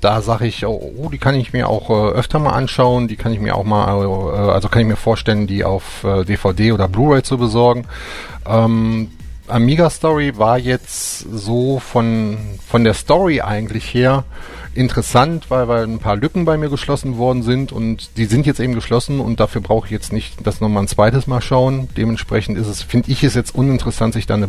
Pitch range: 100-130 Hz